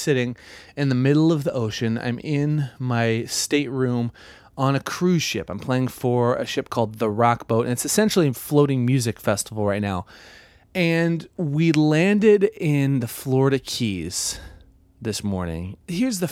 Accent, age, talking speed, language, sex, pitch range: American, 30-49, 160 wpm, English, male, 105-150 Hz